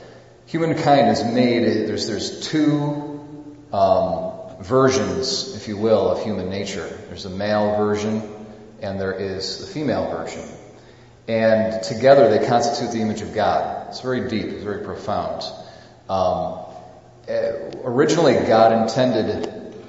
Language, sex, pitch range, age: English, male, 105-120 Hz, 40-59